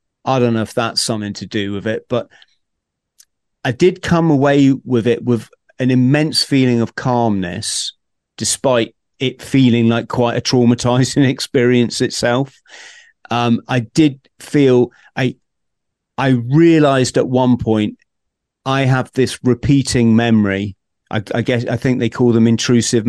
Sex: male